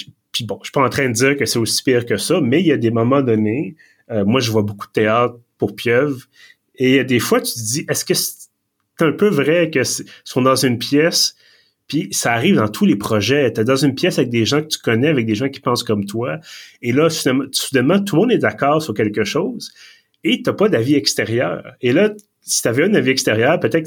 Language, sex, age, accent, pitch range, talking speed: French, male, 30-49, Canadian, 110-155 Hz, 265 wpm